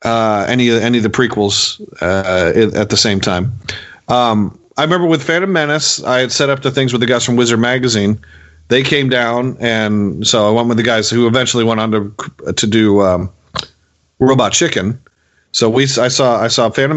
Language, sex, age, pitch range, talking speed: English, male, 40-59, 105-140 Hz, 200 wpm